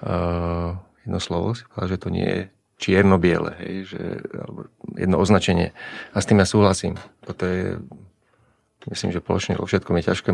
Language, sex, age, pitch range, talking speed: Slovak, male, 30-49, 90-105 Hz, 150 wpm